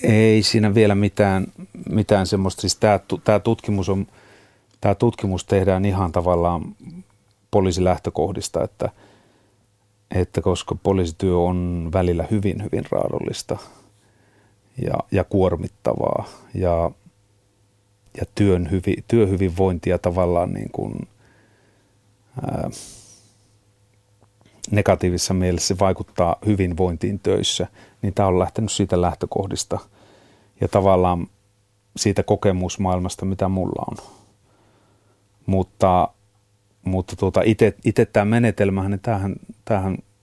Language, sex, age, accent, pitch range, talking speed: Finnish, male, 30-49, native, 95-105 Hz, 90 wpm